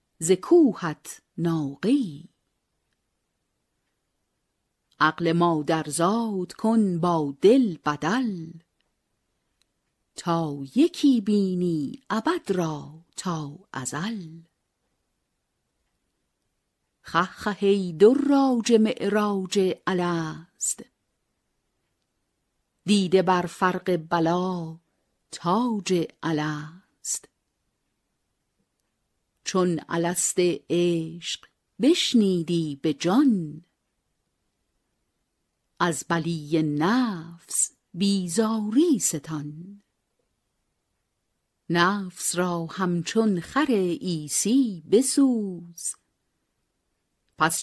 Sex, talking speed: female, 60 wpm